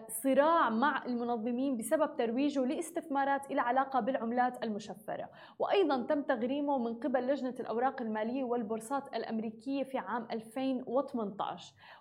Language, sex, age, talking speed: Arabic, female, 20-39, 115 wpm